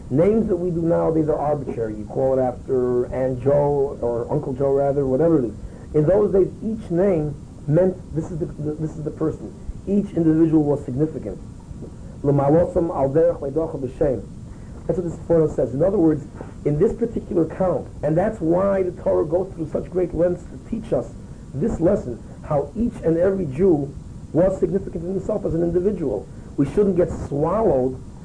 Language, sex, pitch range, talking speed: English, male, 140-175 Hz, 170 wpm